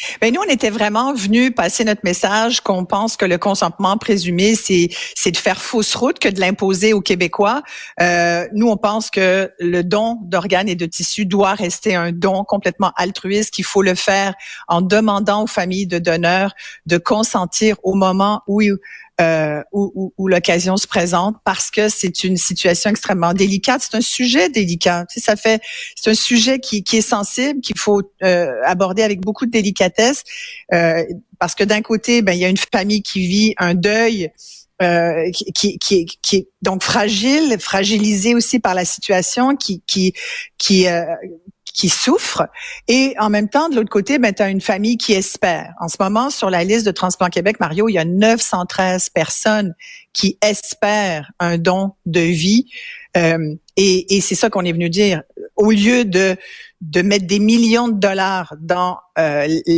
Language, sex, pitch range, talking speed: French, female, 180-220 Hz, 185 wpm